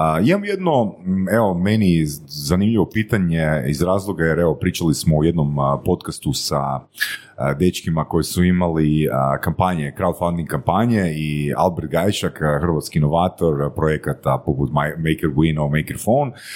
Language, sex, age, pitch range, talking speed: Croatian, male, 30-49, 75-105 Hz, 145 wpm